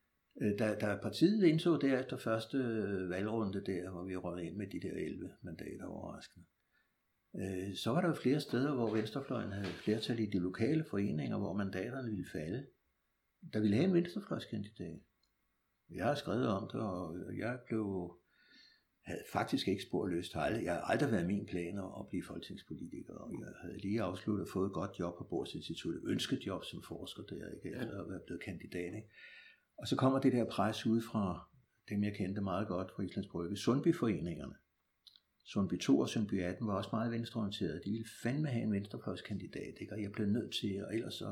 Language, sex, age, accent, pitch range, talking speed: Danish, male, 60-79, native, 100-120 Hz, 185 wpm